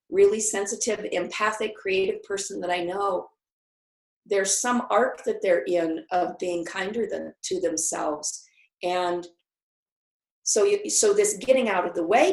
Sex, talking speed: female, 145 wpm